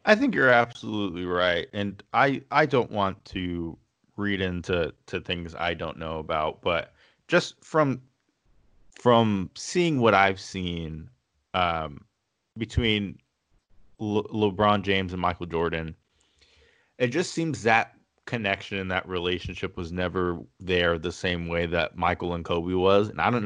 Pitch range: 90-115 Hz